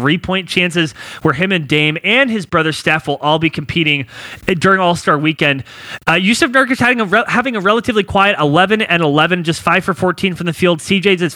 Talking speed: 215 wpm